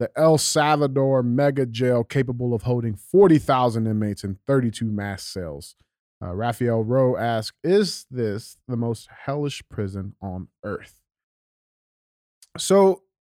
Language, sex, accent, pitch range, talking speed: English, male, American, 120-170 Hz, 125 wpm